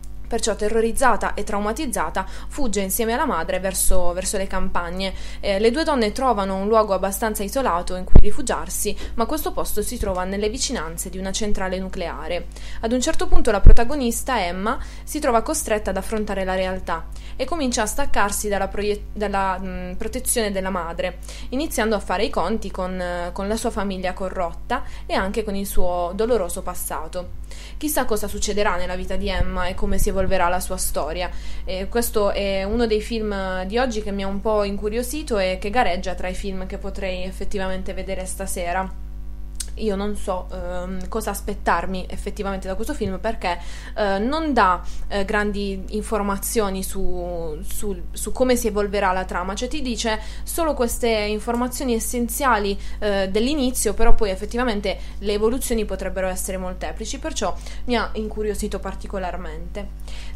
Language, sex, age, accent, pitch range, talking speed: Italian, female, 20-39, native, 185-225 Hz, 160 wpm